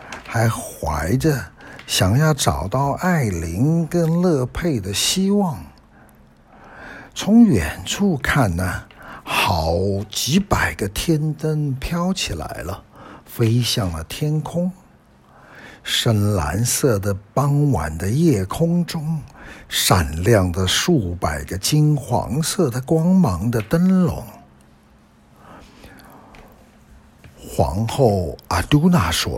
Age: 60-79